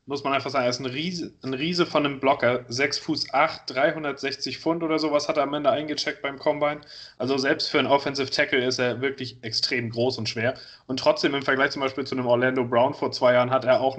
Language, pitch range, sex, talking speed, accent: German, 120-140 Hz, male, 240 wpm, German